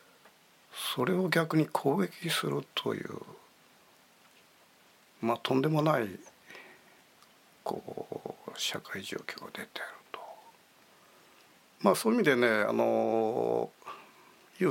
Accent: native